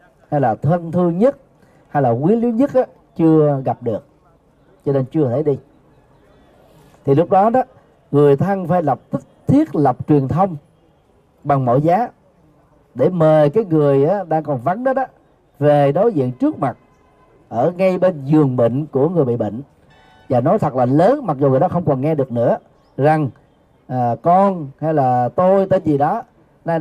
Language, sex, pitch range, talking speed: Vietnamese, male, 135-185 Hz, 185 wpm